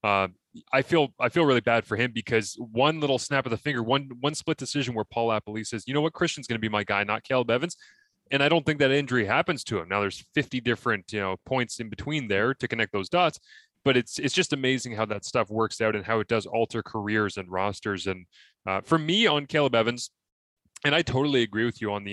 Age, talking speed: 20-39, 250 wpm